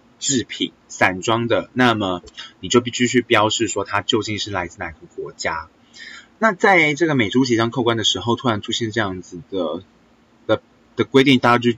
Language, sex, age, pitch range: Chinese, male, 20-39, 95-130 Hz